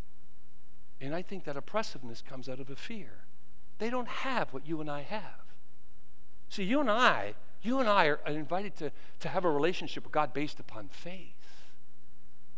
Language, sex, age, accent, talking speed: English, male, 50-69, American, 175 wpm